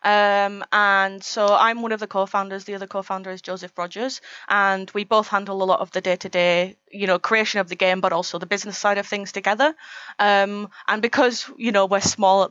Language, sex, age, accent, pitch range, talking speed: English, female, 20-39, British, 185-210 Hz, 215 wpm